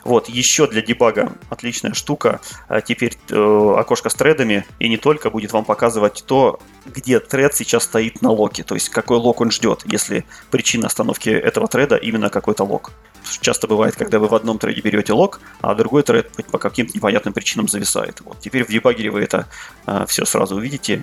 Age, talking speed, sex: 20-39, 185 wpm, male